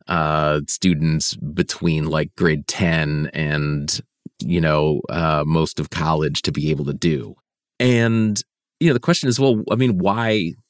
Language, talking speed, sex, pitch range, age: English, 155 wpm, male, 80-110 Hz, 30-49